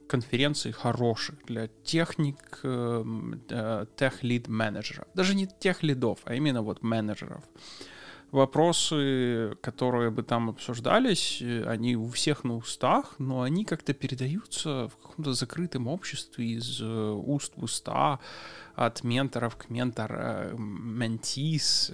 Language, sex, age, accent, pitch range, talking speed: Russian, male, 20-39, native, 115-140 Hz, 105 wpm